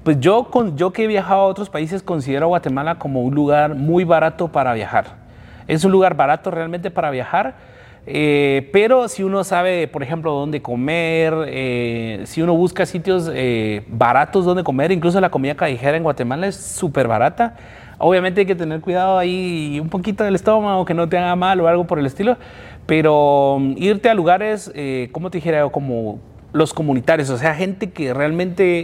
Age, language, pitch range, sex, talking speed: 30-49, Spanish, 130-175 Hz, male, 185 wpm